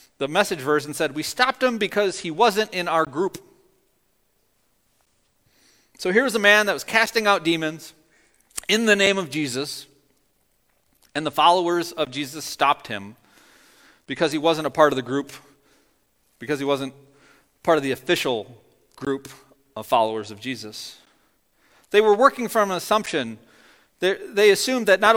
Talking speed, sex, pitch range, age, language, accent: 155 wpm, male, 150-210 Hz, 40-59, English, American